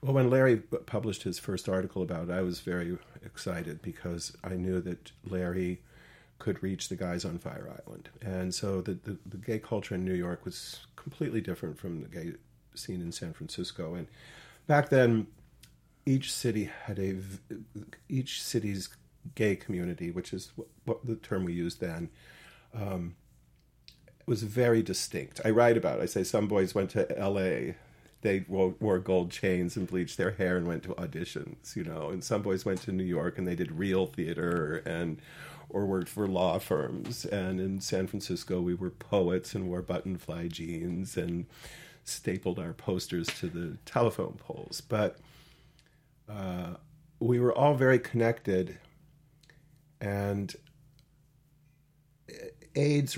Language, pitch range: English, 90-130 Hz